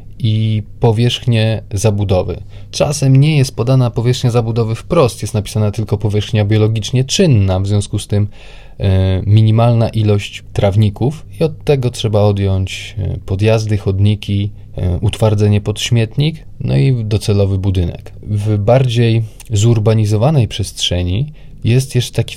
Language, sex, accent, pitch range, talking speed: Polish, male, native, 100-125 Hz, 120 wpm